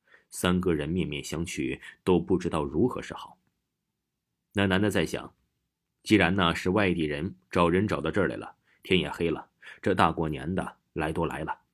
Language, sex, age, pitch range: Chinese, male, 30-49, 85-120 Hz